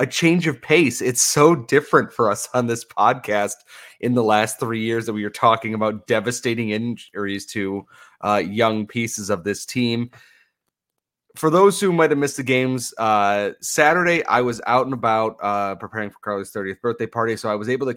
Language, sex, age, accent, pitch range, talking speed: English, male, 30-49, American, 105-145 Hz, 195 wpm